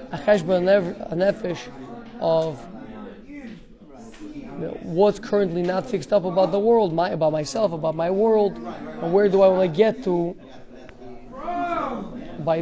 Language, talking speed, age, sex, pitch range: English, 125 wpm, 20-39, male, 170-225 Hz